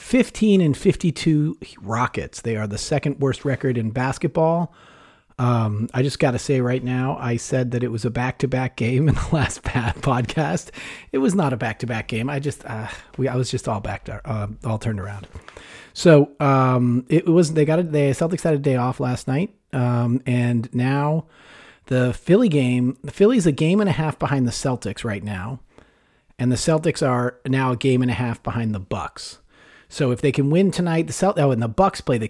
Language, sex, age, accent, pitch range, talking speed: English, male, 40-59, American, 125-155 Hz, 205 wpm